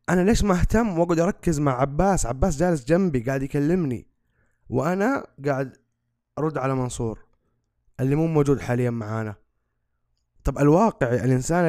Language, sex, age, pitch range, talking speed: Arabic, male, 20-39, 135-190 Hz, 130 wpm